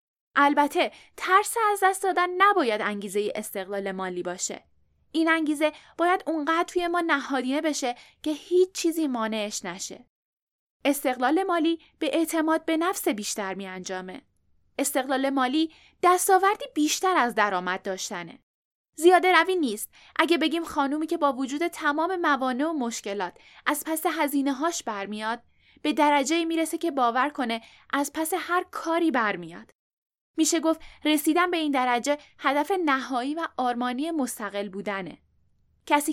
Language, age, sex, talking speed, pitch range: Persian, 10-29, female, 135 wpm, 240-330 Hz